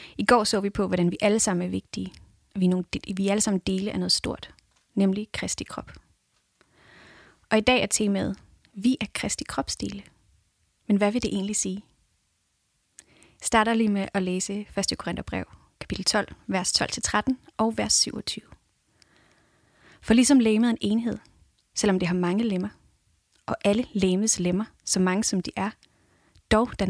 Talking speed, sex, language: 170 wpm, female, English